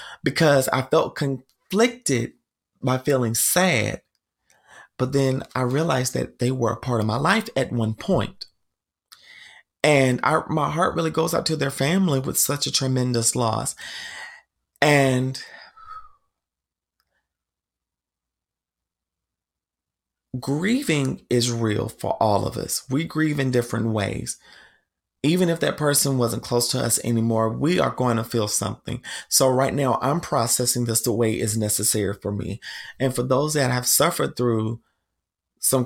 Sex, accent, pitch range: male, American, 115-140 Hz